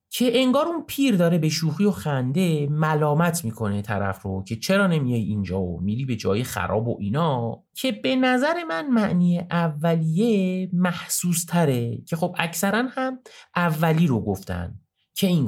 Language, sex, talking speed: Persian, male, 160 wpm